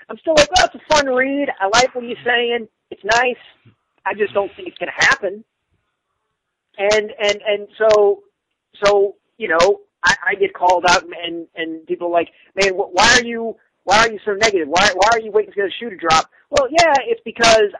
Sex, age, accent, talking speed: male, 40-59, American, 210 wpm